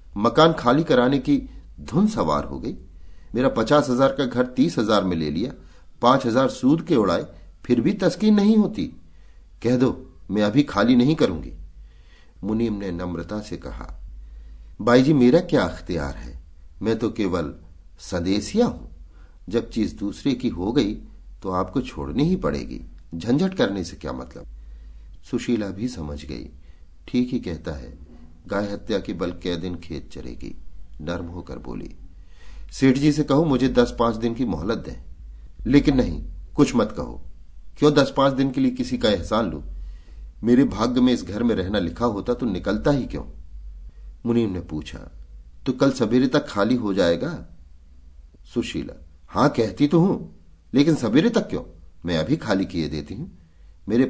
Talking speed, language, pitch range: 165 wpm, Hindi, 75-120 Hz